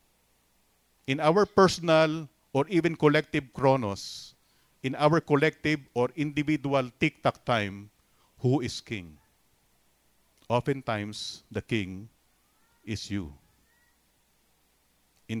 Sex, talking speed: male, 90 wpm